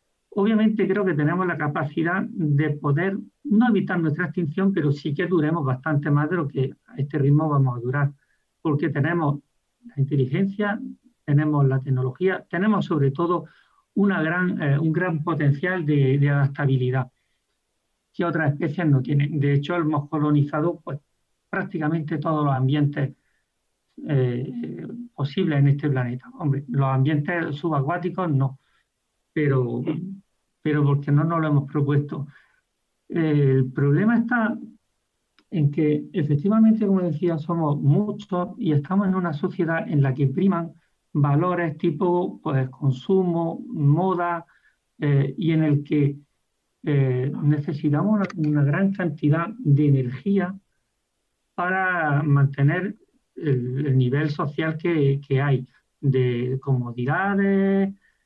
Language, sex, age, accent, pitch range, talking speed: Spanish, male, 50-69, Spanish, 140-180 Hz, 130 wpm